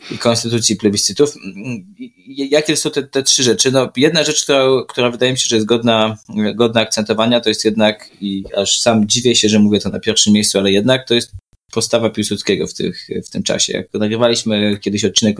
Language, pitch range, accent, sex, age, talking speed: Polish, 100-120 Hz, native, male, 20-39, 200 wpm